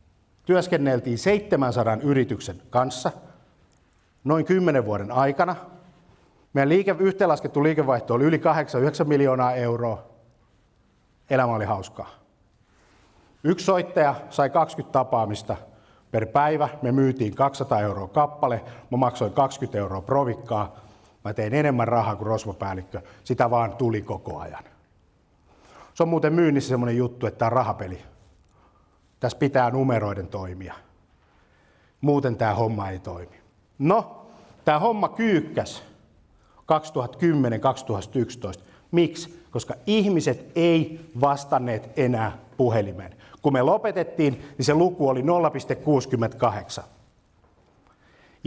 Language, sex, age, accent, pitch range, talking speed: Finnish, male, 50-69, native, 105-150 Hz, 105 wpm